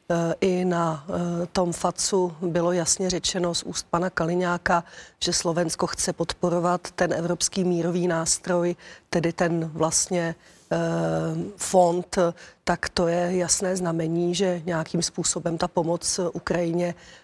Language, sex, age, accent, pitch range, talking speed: Czech, female, 40-59, native, 170-185 Hz, 120 wpm